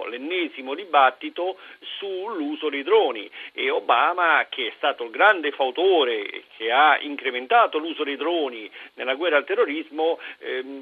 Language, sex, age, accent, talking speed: Italian, male, 50-69, native, 135 wpm